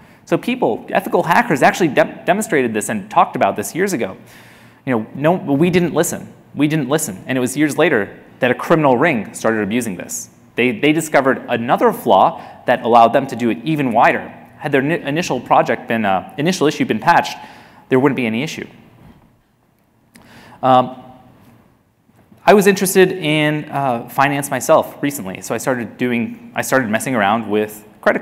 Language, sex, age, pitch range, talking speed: English, male, 30-49, 125-175 Hz, 175 wpm